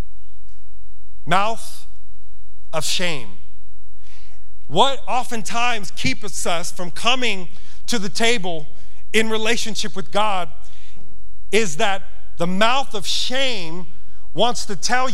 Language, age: English, 40-59